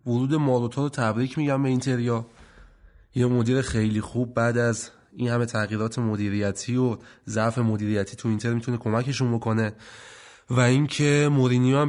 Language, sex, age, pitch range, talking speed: Persian, male, 30-49, 110-135 Hz, 145 wpm